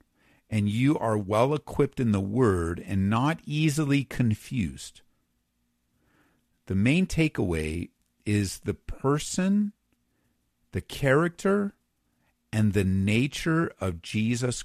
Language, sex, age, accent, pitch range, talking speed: English, male, 50-69, American, 100-145 Hz, 100 wpm